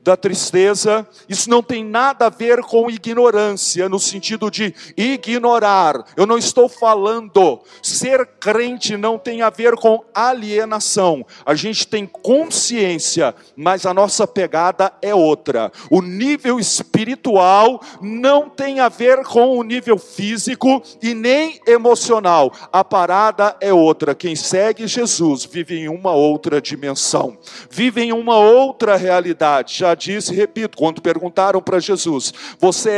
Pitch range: 185-240 Hz